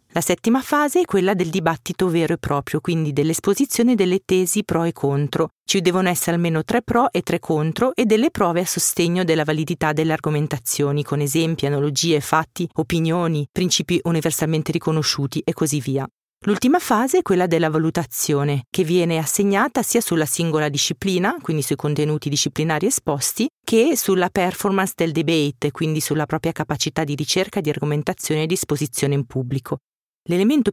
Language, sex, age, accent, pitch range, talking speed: Italian, female, 40-59, native, 150-185 Hz, 160 wpm